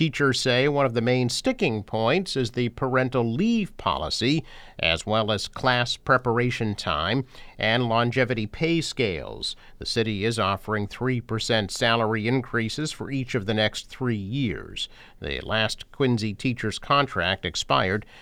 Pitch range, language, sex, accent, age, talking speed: 110-135 Hz, English, male, American, 50-69, 140 wpm